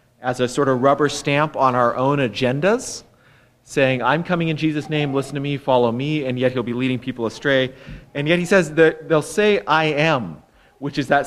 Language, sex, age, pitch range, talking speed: English, male, 30-49, 115-145 Hz, 215 wpm